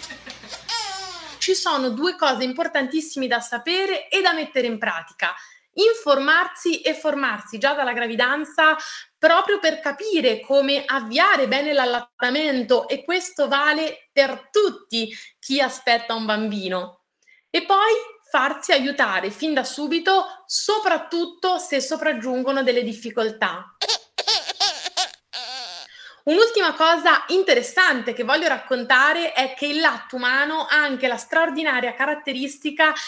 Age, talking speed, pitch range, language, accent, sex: 30-49, 110 wpm, 255-335 Hz, Italian, native, female